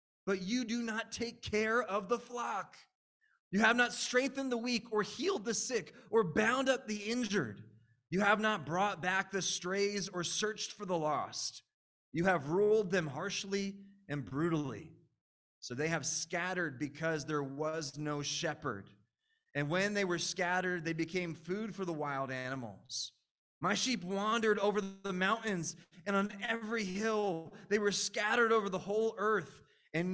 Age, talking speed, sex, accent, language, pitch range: 20-39, 165 wpm, male, American, English, 165-220 Hz